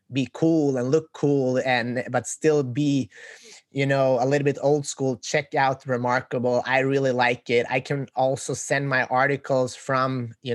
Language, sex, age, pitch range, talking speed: English, male, 20-39, 125-145 Hz, 175 wpm